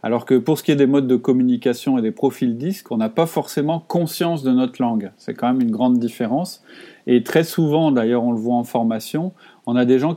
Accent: French